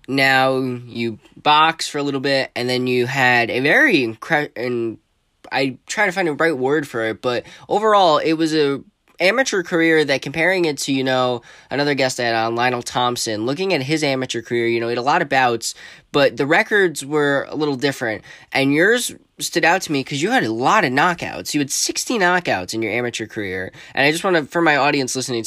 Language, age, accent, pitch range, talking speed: English, 10-29, American, 115-150 Hz, 220 wpm